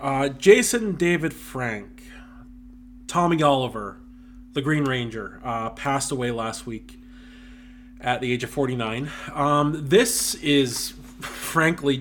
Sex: male